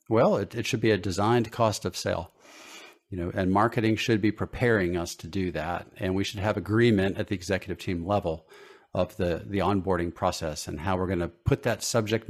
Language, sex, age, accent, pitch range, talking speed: English, male, 50-69, American, 90-115 Hz, 210 wpm